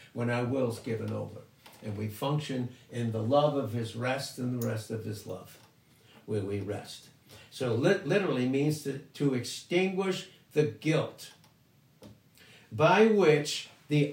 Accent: American